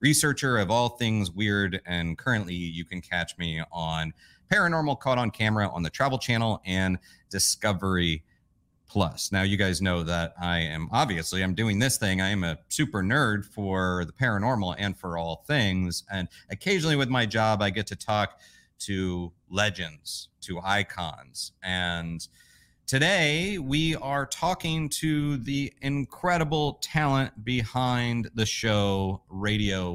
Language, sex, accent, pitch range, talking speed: English, male, American, 95-135 Hz, 145 wpm